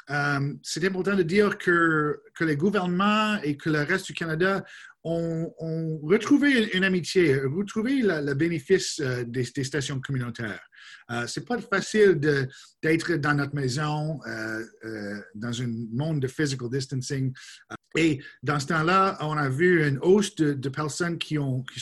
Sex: male